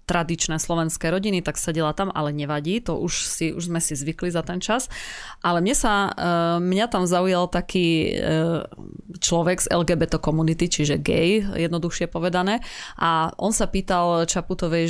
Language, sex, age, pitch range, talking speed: Slovak, female, 20-39, 170-200 Hz, 155 wpm